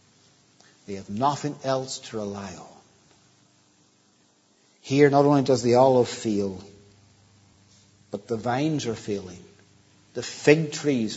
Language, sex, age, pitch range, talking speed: English, male, 60-79, 130-195 Hz, 120 wpm